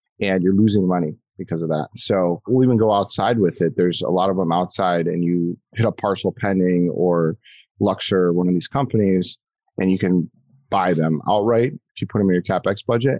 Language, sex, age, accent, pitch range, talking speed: English, male, 30-49, American, 95-120 Hz, 210 wpm